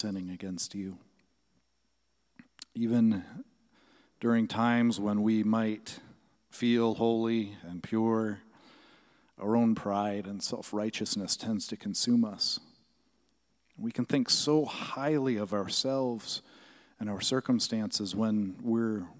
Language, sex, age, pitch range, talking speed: English, male, 40-59, 100-120 Hz, 105 wpm